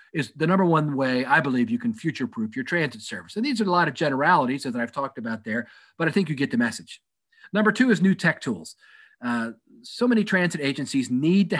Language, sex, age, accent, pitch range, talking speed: English, male, 40-59, American, 135-200 Hz, 235 wpm